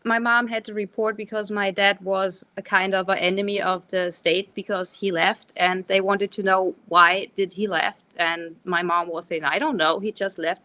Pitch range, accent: 180-210 Hz, German